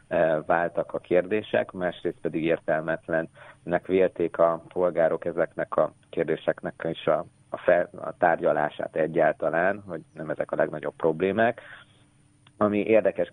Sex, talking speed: male, 115 wpm